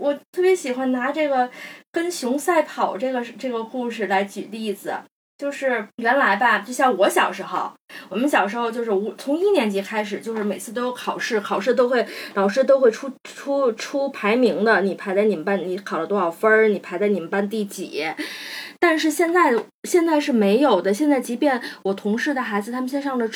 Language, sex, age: Chinese, female, 20-39